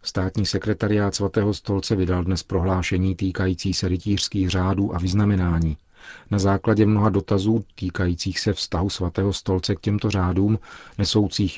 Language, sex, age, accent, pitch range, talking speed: Czech, male, 40-59, native, 90-100 Hz, 135 wpm